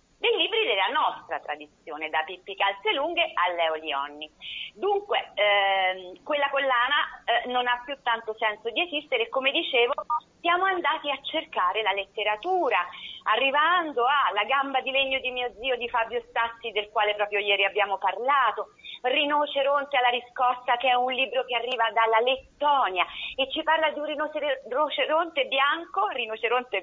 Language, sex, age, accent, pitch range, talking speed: Italian, female, 40-59, native, 205-300 Hz, 150 wpm